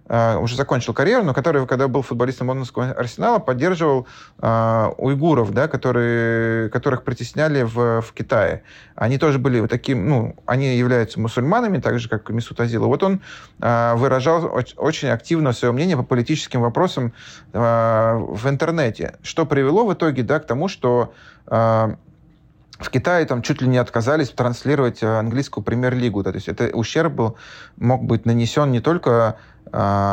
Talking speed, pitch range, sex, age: 155 wpm, 115-140 Hz, male, 30-49